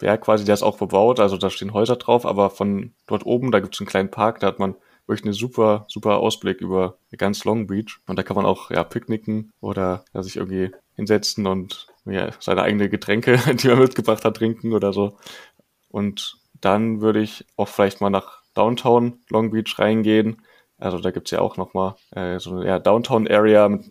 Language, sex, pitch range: German, male, 100-110 Hz